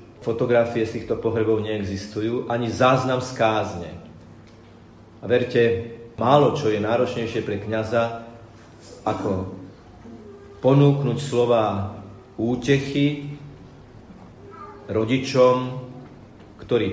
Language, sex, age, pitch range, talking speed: Slovak, male, 40-59, 110-130 Hz, 80 wpm